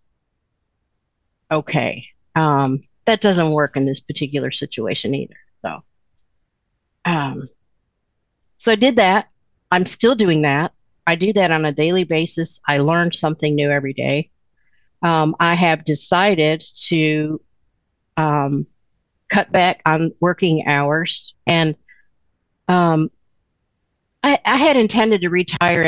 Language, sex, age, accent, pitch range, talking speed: English, female, 50-69, American, 150-185 Hz, 120 wpm